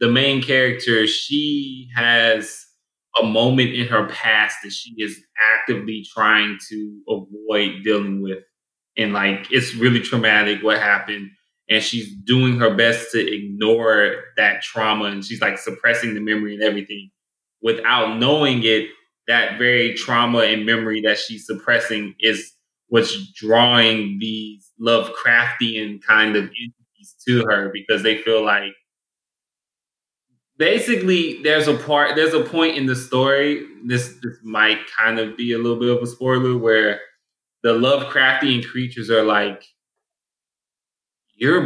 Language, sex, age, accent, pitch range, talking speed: English, male, 20-39, American, 110-130 Hz, 140 wpm